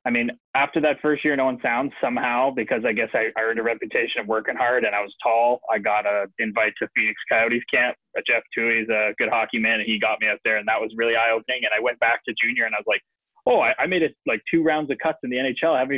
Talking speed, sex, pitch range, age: 295 wpm, male, 110-130 Hz, 20-39